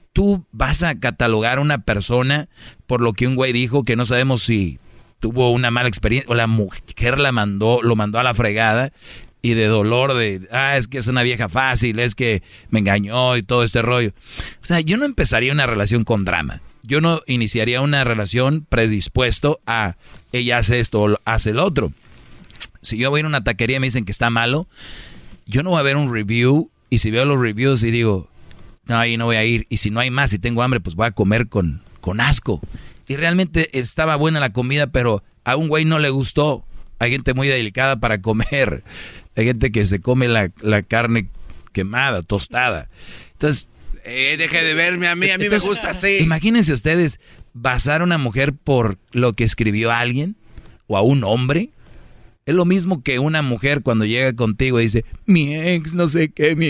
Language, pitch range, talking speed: Spanish, 110-140 Hz, 205 wpm